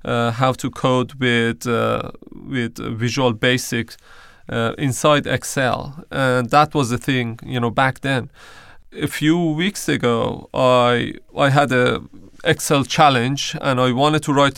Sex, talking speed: male, 150 wpm